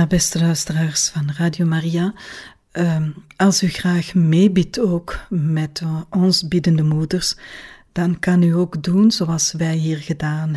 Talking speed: 130 wpm